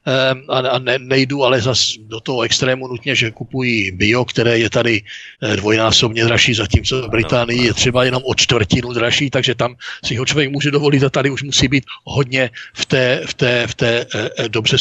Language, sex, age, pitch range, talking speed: Czech, male, 60-79, 125-145 Hz, 180 wpm